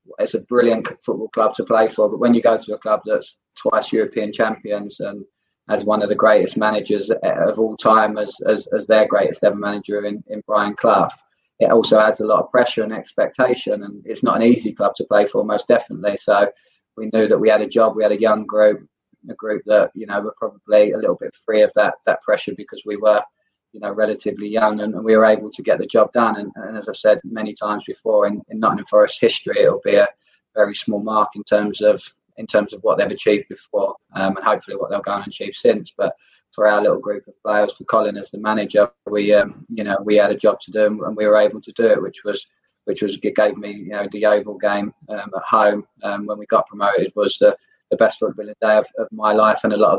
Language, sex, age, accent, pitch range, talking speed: English, male, 20-39, British, 105-120 Hz, 245 wpm